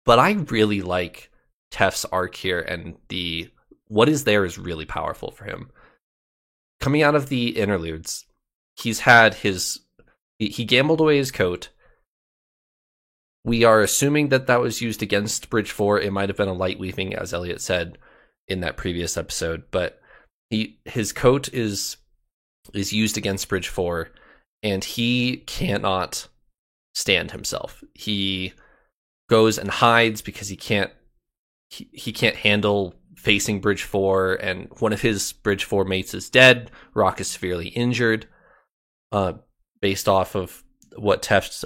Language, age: English, 20-39